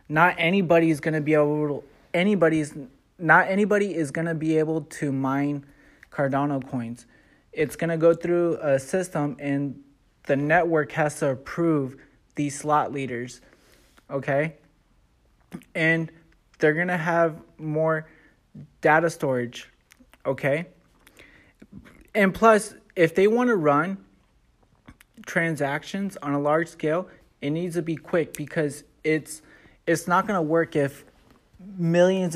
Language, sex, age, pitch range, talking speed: English, male, 20-39, 140-165 Hz, 125 wpm